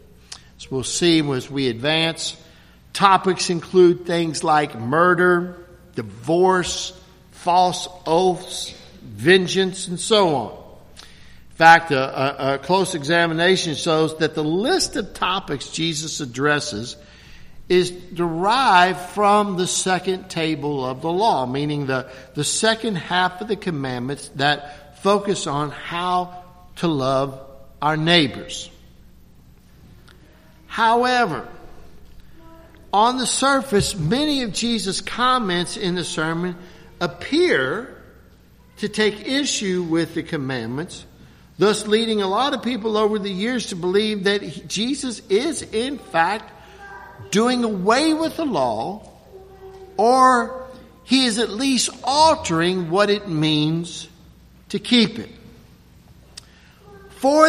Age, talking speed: 60-79, 115 wpm